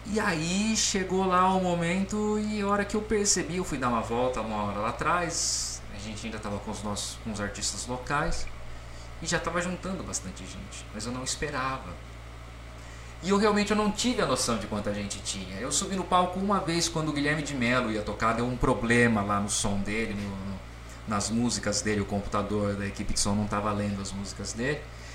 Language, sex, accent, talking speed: Portuguese, male, Brazilian, 220 wpm